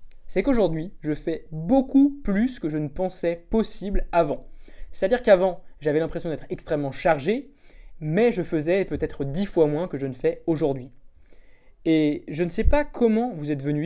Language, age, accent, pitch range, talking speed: French, 20-39, French, 155-220 Hz, 175 wpm